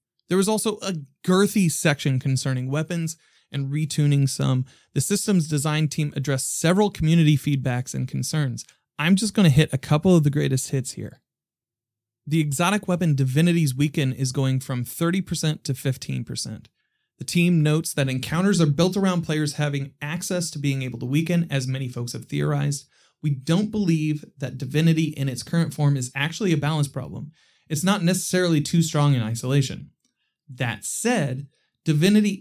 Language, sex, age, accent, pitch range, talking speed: English, male, 30-49, American, 130-165 Hz, 165 wpm